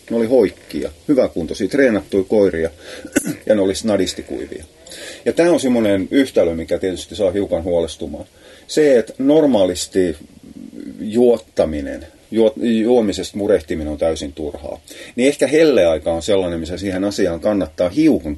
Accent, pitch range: native, 90-130 Hz